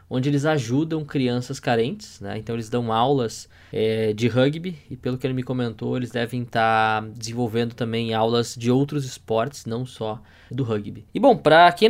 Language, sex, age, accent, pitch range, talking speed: Portuguese, male, 10-29, Brazilian, 115-140 Hz, 175 wpm